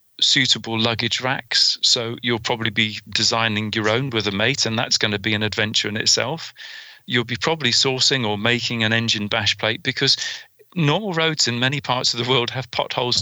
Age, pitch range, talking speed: 40-59, 110-130 Hz, 195 wpm